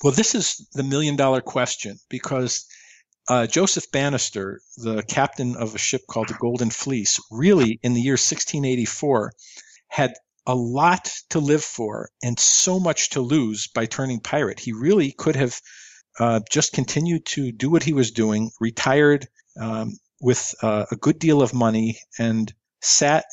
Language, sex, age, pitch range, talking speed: English, male, 50-69, 115-150 Hz, 160 wpm